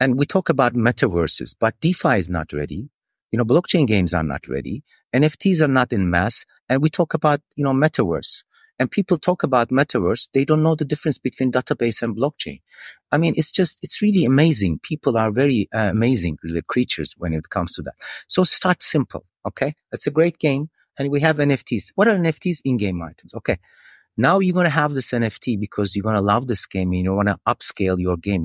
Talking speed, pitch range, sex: 210 wpm, 95-150 Hz, male